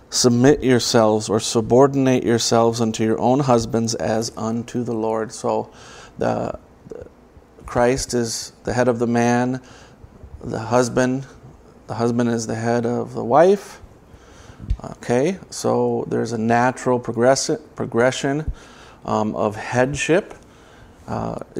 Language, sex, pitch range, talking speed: English, male, 110-125 Hz, 120 wpm